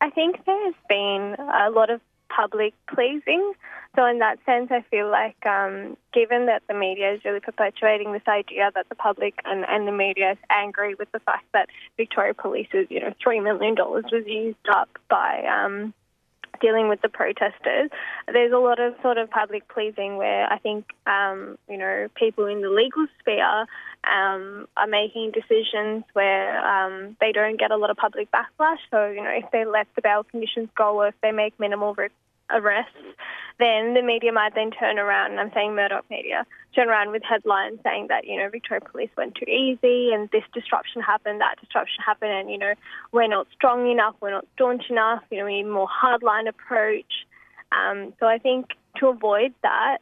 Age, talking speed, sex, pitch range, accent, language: 10-29, 195 wpm, female, 205-240 Hz, Australian, English